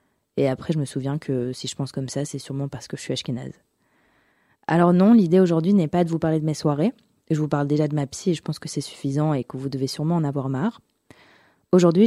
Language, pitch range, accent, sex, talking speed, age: French, 145-180 Hz, French, female, 260 wpm, 20-39